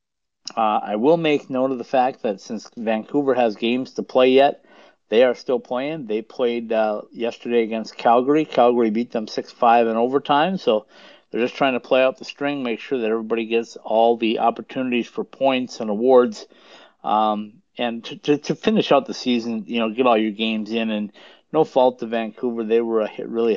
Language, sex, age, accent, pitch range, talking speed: English, male, 50-69, American, 110-130 Hz, 200 wpm